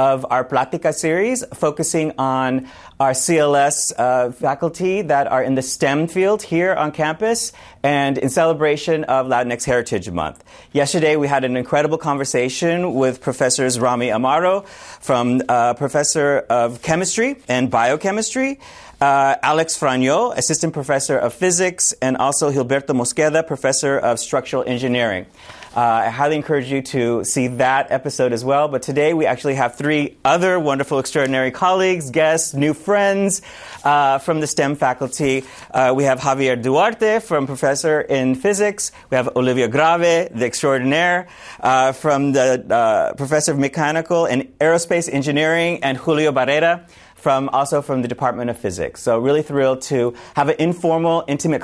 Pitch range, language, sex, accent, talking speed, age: 130-165 Hz, English, male, American, 150 wpm, 30-49